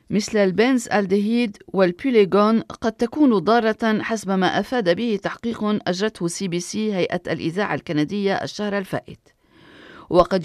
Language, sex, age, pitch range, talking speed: Arabic, female, 40-59, 180-225 Hz, 125 wpm